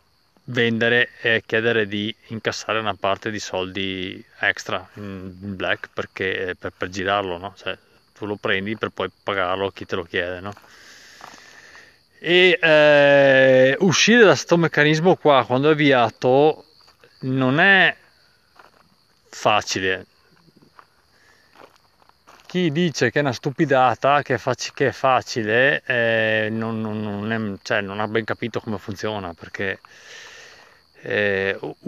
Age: 30-49